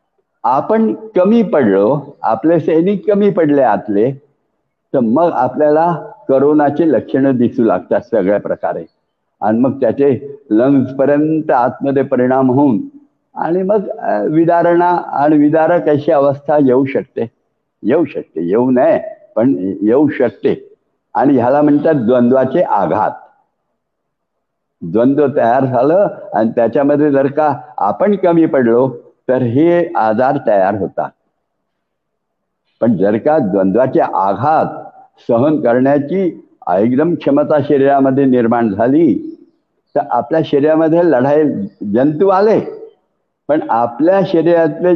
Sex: male